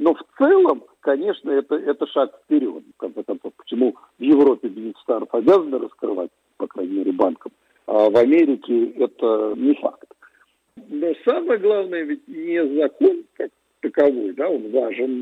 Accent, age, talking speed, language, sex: native, 50-69, 145 wpm, Russian, male